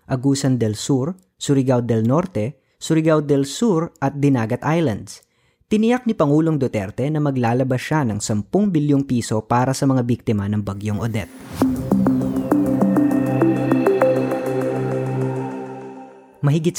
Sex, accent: female, native